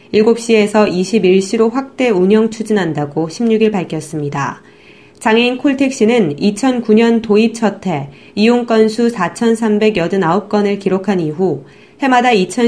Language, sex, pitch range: Korean, female, 180-230 Hz